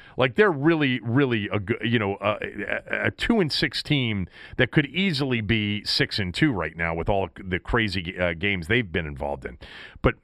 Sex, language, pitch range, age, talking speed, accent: male, English, 85-110 Hz, 40-59, 195 wpm, American